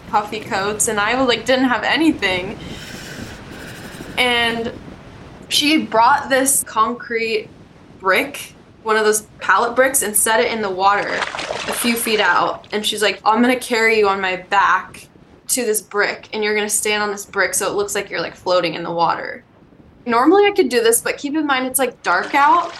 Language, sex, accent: English, female, American